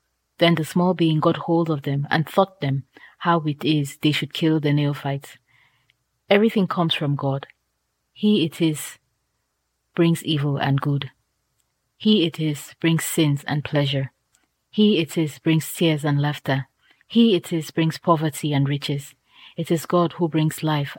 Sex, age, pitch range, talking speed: female, 30-49, 140-170 Hz, 165 wpm